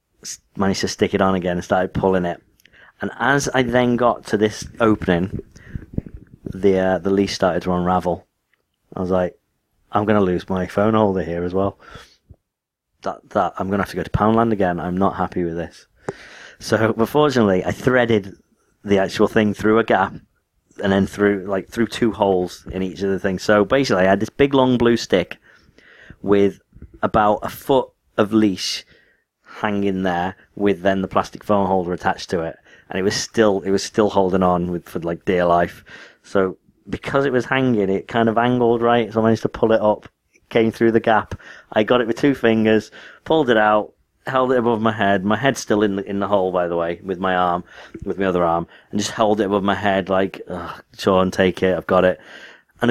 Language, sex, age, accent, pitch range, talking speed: English, male, 30-49, British, 95-115 Hz, 210 wpm